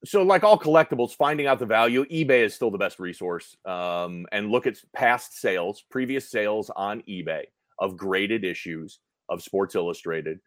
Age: 30-49